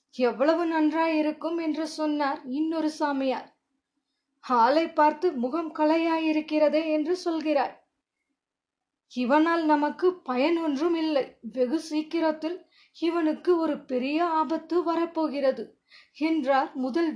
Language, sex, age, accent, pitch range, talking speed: Tamil, female, 20-39, native, 290-335 Hz, 90 wpm